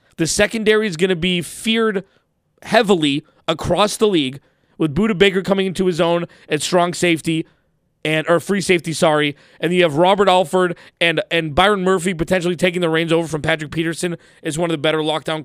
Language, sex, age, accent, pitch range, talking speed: English, male, 20-39, American, 155-190 Hz, 190 wpm